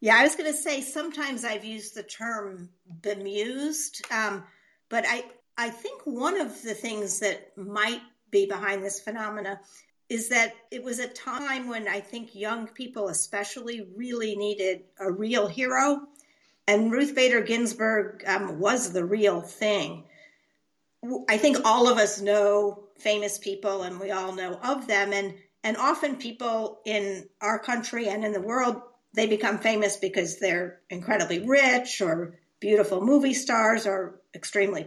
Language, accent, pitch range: English, American, 200-245 Hz